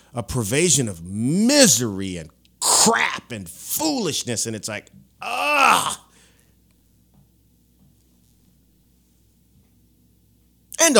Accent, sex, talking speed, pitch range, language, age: American, male, 70 wpm, 100-140 Hz, English, 30-49